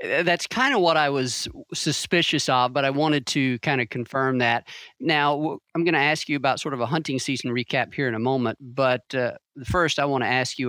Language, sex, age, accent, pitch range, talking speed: English, male, 40-59, American, 120-145 Hz, 235 wpm